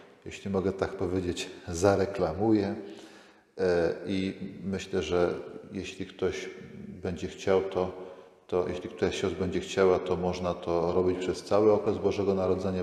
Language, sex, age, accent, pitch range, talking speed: Polish, male, 40-59, native, 90-110 Hz, 125 wpm